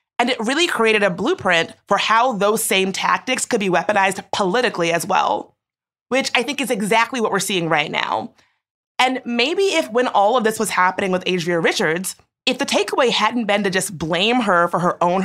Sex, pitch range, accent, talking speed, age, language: female, 180-225 Hz, American, 200 wpm, 30-49, English